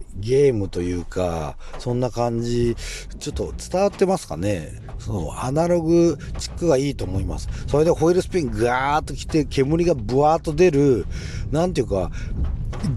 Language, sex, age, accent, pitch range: Japanese, male, 40-59, native, 95-160 Hz